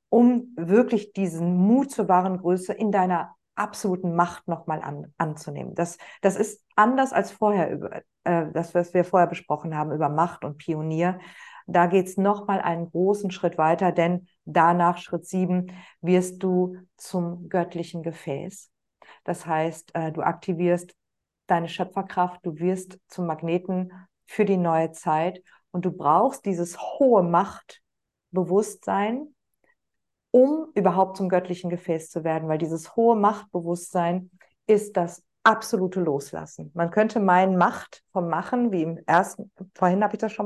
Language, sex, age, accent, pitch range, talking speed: German, female, 50-69, German, 170-195 Hz, 145 wpm